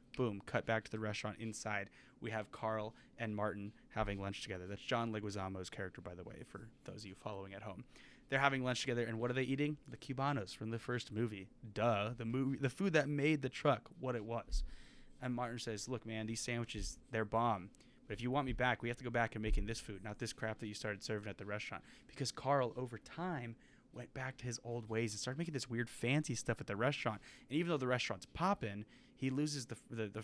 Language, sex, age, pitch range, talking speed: English, male, 20-39, 105-130 Hz, 240 wpm